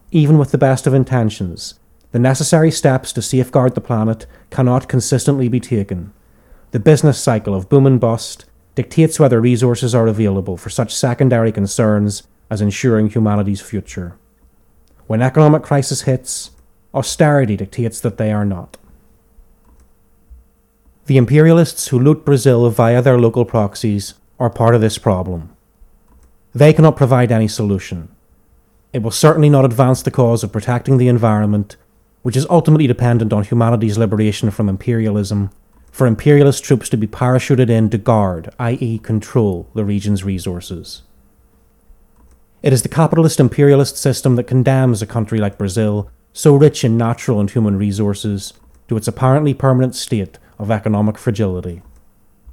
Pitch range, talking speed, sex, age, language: 105-130 Hz, 145 wpm, male, 30-49, English